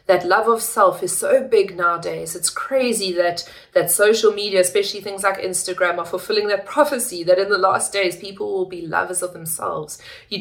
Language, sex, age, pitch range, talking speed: English, female, 30-49, 180-225 Hz, 195 wpm